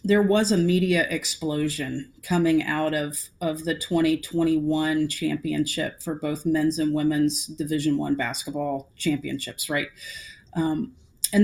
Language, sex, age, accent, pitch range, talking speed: English, female, 40-59, American, 160-180 Hz, 125 wpm